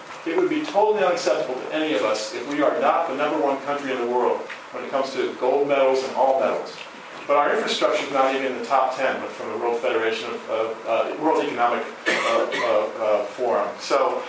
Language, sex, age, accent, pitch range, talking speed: English, male, 40-59, American, 135-165 Hz, 225 wpm